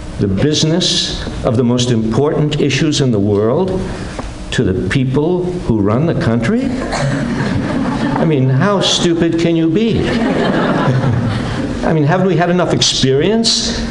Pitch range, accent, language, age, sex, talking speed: 115-160 Hz, American, English, 60-79, male, 135 wpm